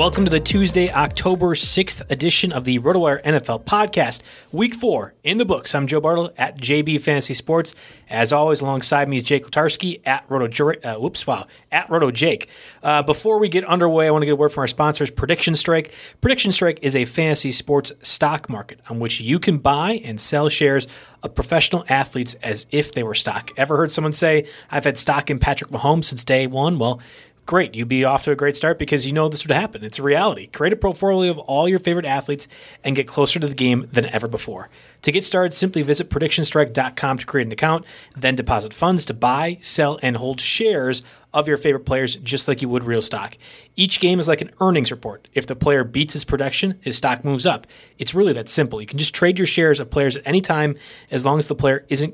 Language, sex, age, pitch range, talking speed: English, male, 30-49, 135-165 Hz, 225 wpm